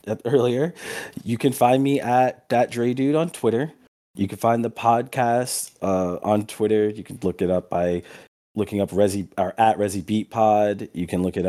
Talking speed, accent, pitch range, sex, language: 195 wpm, American, 95-115 Hz, male, English